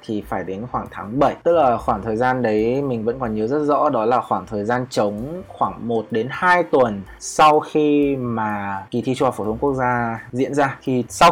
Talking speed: 230 wpm